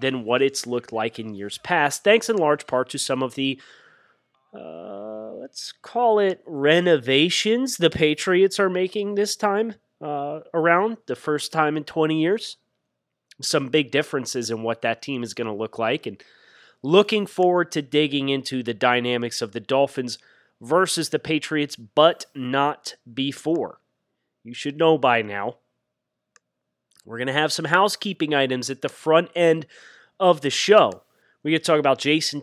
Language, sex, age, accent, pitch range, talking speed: English, male, 30-49, American, 125-165 Hz, 165 wpm